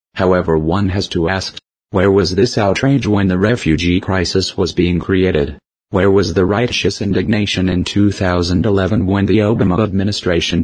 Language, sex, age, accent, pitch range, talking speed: English, male, 40-59, American, 90-105 Hz, 150 wpm